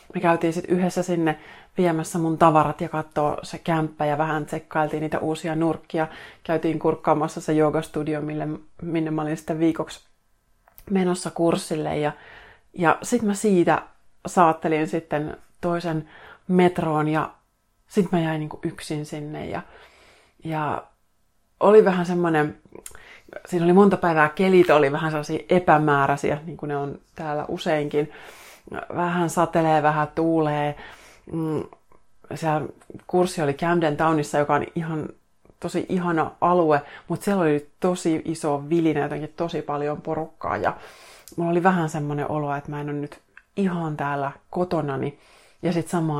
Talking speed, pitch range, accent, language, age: 140 wpm, 150-170 Hz, native, Finnish, 30-49